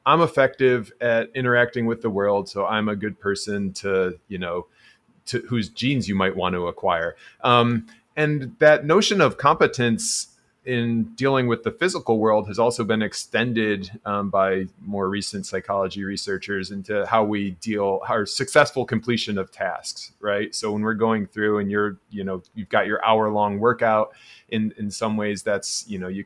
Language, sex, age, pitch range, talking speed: English, male, 30-49, 95-120 Hz, 180 wpm